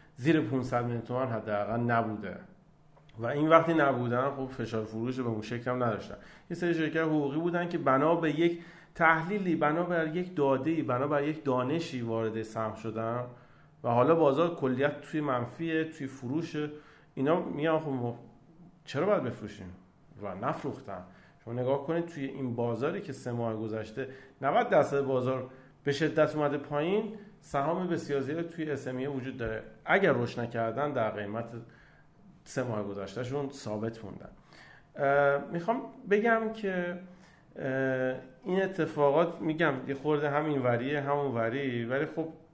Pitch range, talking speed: 115-155 Hz, 145 wpm